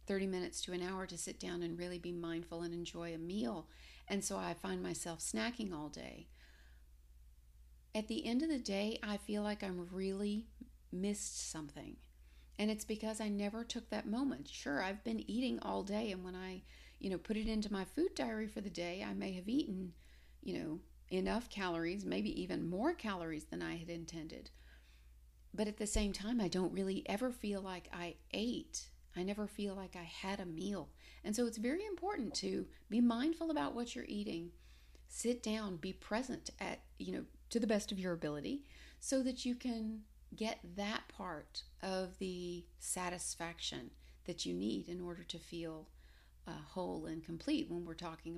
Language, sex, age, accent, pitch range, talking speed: English, female, 50-69, American, 155-215 Hz, 185 wpm